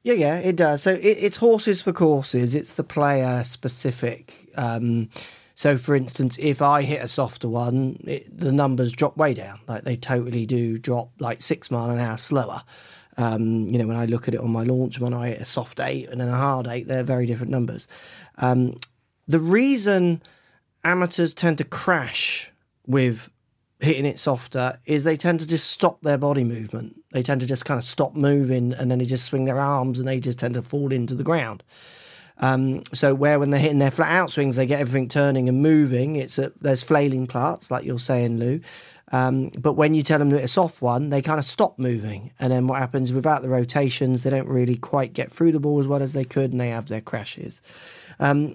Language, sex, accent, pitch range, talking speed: English, male, British, 125-155 Hz, 220 wpm